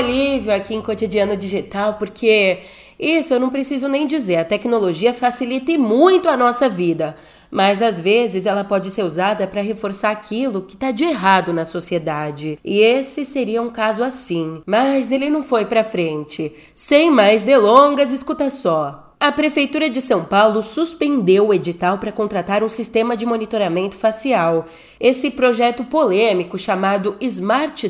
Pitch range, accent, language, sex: 185-250 Hz, Brazilian, Portuguese, female